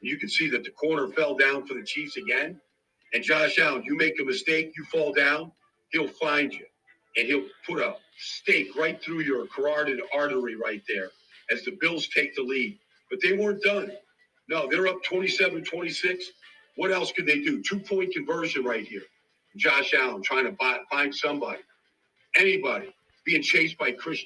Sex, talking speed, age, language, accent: male, 175 wpm, 50-69, English, American